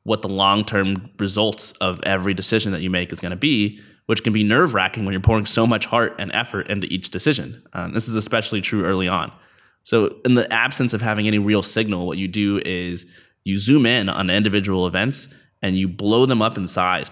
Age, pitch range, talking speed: 20-39, 95-115 Hz, 215 wpm